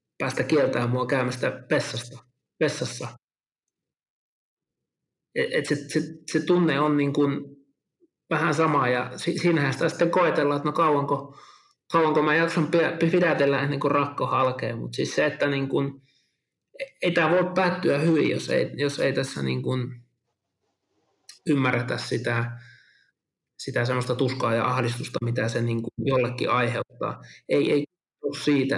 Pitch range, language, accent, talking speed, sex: 125-155 Hz, Finnish, native, 135 wpm, male